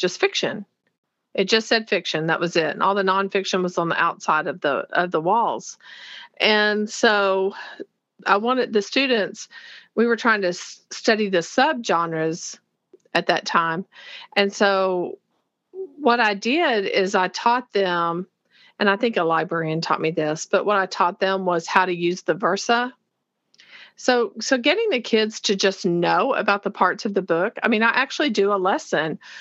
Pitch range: 185-225 Hz